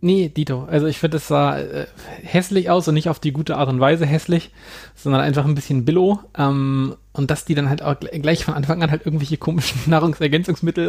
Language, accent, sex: German, German, male